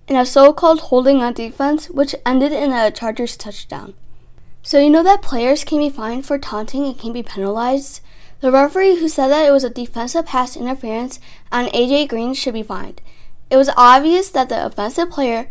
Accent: American